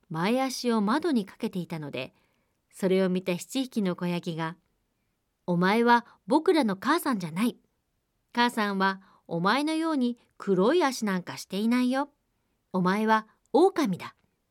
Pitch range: 175-235 Hz